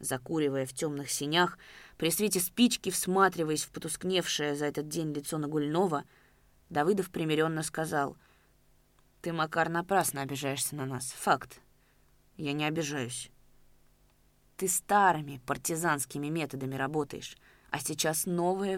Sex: female